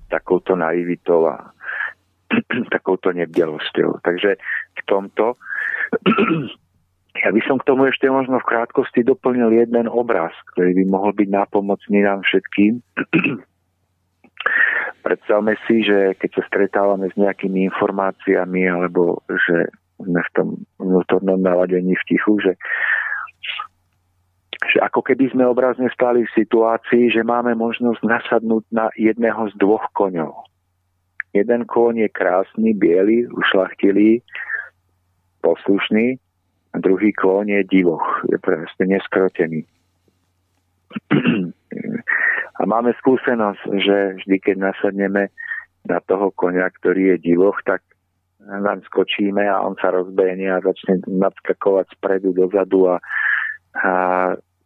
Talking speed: 115 wpm